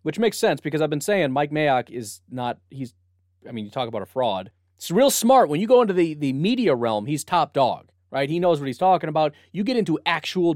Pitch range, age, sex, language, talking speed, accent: 105-155 Hz, 30-49, male, English, 250 wpm, American